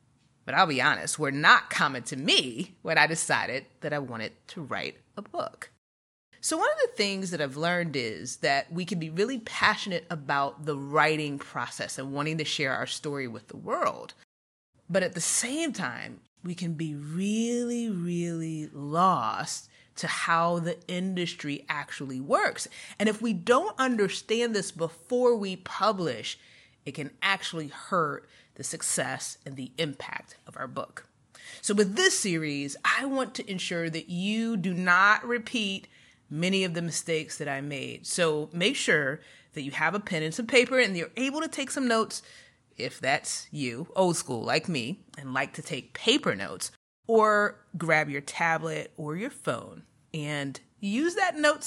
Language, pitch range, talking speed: English, 145-210 Hz, 170 wpm